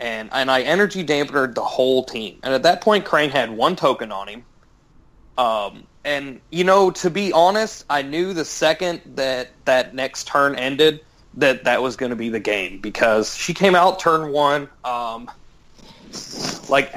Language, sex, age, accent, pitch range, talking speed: English, male, 30-49, American, 130-160 Hz, 175 wpm